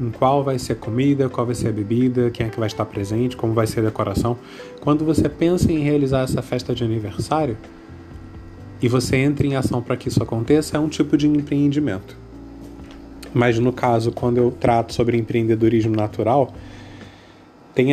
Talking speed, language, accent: 185 wpm, Portuguese, Brazilian